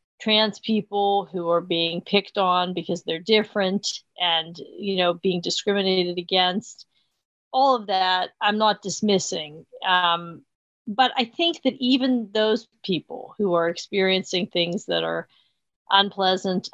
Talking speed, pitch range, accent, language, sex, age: 135 wpm, 180-225 Hz, American, English, female, 40-59